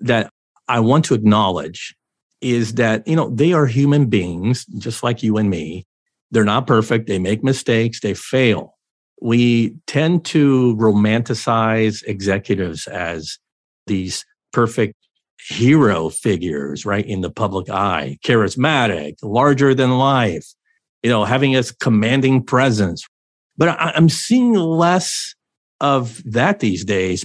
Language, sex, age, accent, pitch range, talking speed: English, male, 50-69, American, 105-145 Hz, 130 wpm